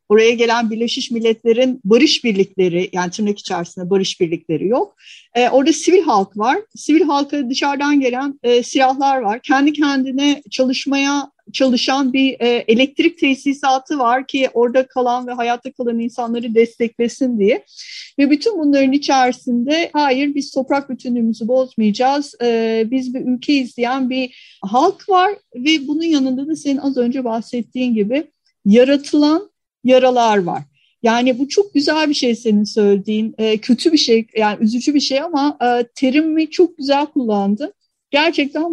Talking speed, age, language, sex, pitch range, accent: 145 wpm, 50-69, Turkish, female, 235-285 Hz, native